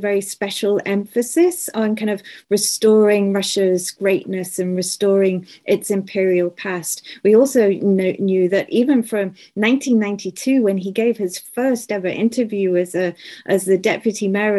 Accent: British